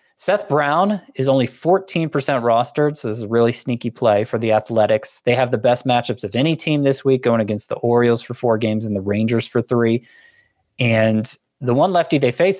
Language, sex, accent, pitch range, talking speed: English, male, American, 110-140 Hz, 210 wpm